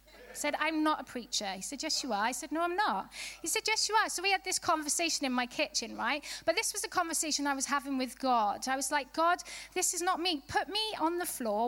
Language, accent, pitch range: English, British, 240-310 Hz